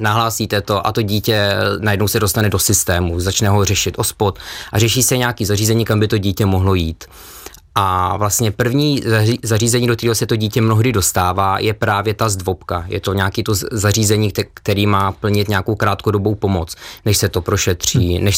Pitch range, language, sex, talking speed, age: 95-115 Hz, Czech, male, 185 wpm, 20-39